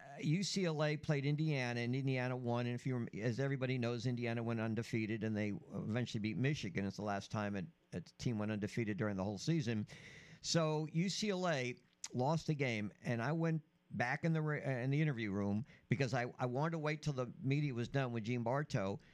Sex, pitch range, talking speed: male, 120-155 Hz, 195 wpm